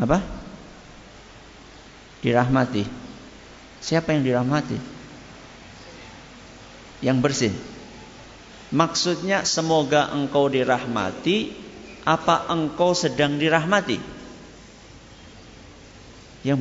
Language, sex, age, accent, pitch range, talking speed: Indonesian, male, 50-69, native, 125-165 Hz, 60 wpm